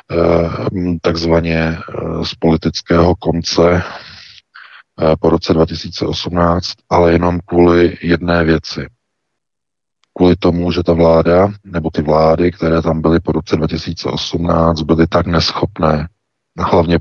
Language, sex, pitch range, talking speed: Czech, male, 80-90 Hz, 105 wpm